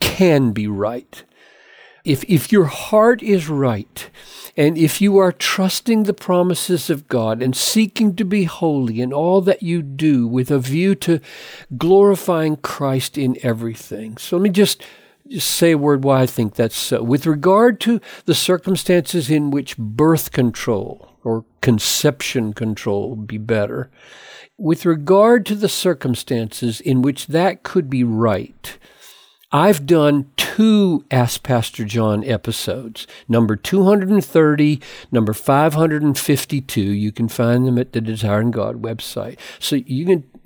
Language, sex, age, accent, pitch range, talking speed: English, male, 60-79, American, 120-180 Hz, 145 wpm